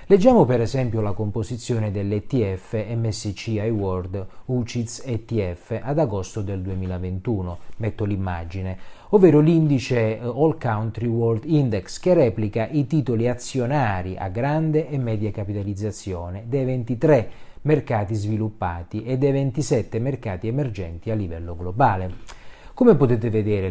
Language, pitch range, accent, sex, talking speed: Italian, 100-130 Hz, native, male, 120 wpm